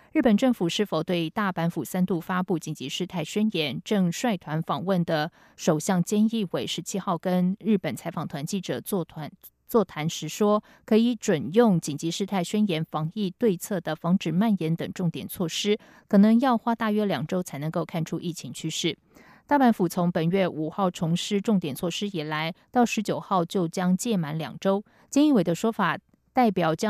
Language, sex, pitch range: French, female, 165-210 Hz